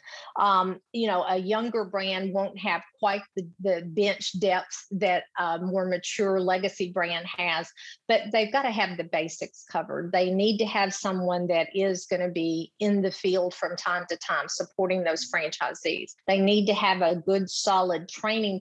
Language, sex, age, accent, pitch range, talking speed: English, female, 50-69, American, 180-210 Hz, 180 wpm